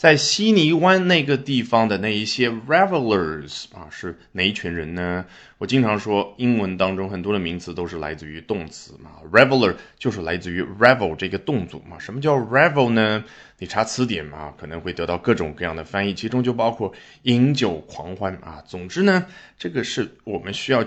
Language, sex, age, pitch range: Chinese, male, 20-39, 95-150 Hz